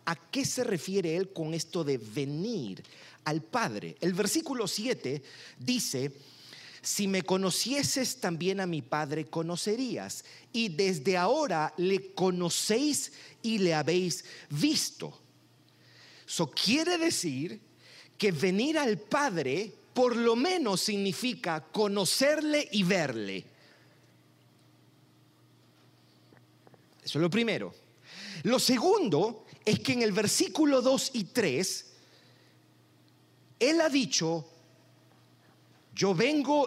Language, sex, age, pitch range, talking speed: Spanish, male, 40-59, 155-245 Hz, 105 wpm